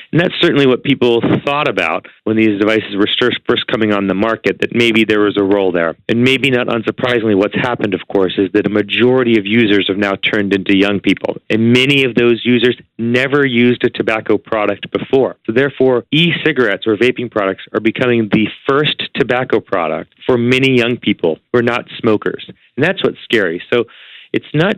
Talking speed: 195 wpm